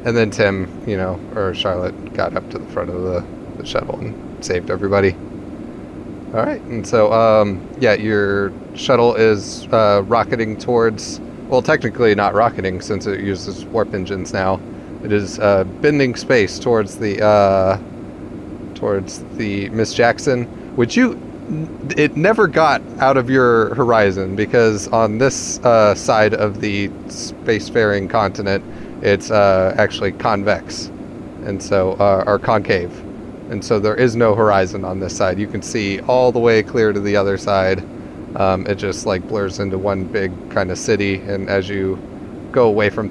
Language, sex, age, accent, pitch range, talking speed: English, male, 30-49, American, 100-120 Hz, 160 wpm